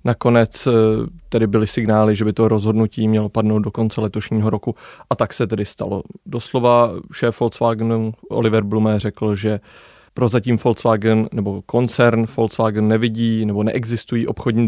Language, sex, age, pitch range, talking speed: Czech, male, 30-49, 110-120 Hz, 145 wpm